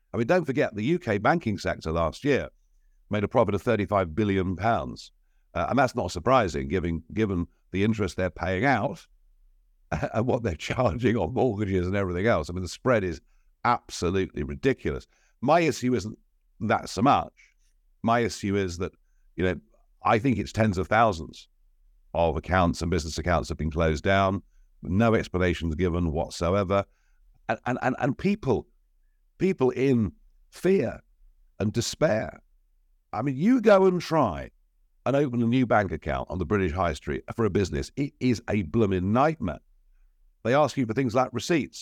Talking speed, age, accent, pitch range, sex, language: 170 wpm, 60-79, British, 85-120 Hz, male, English